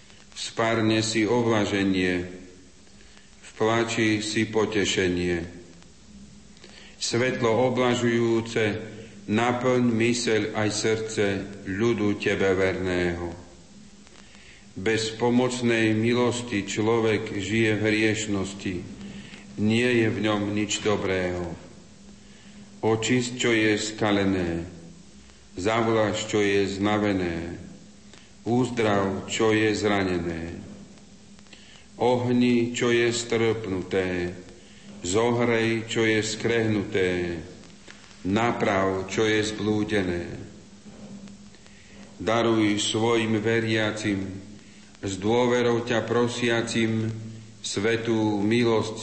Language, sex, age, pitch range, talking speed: Slovak, male, 50-69, 100-115 Hz, 75 wpm